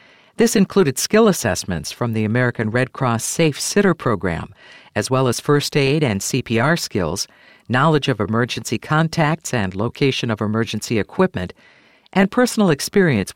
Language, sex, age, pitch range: English, female, 50-69, 115-160 Hz